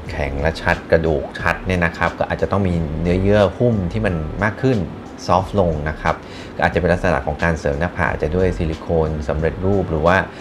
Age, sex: 30-49, male